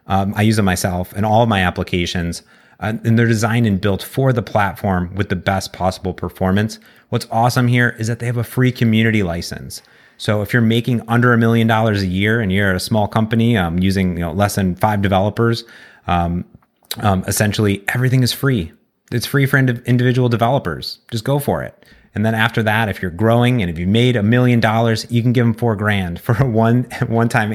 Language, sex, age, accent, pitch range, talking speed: English, male, 30-49, American, 95-120 Hz, 210 wpm